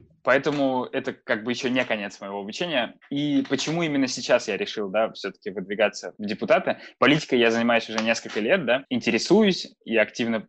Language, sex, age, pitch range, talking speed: Russian, male, 20-39, 115-145 Hz, 160 wpm